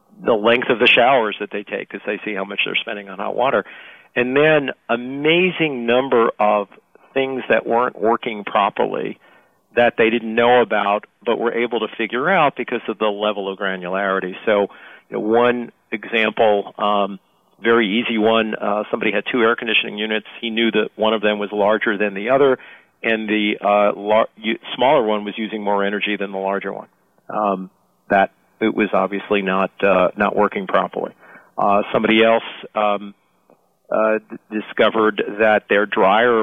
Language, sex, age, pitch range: English, male, 50-69, 100-115 Hz